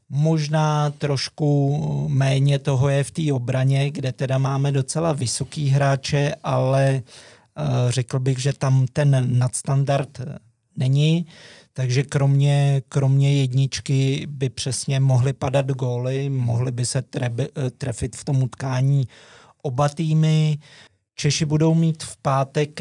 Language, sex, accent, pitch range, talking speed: Czech, male, native, 130-140 Hz, 120 wpm